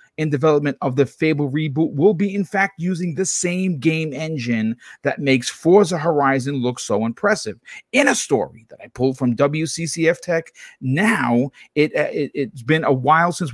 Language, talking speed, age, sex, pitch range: English, 170 wpm, 40-59, male, 125-165 Hz